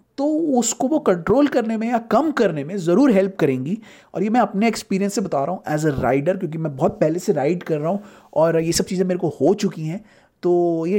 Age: 30-49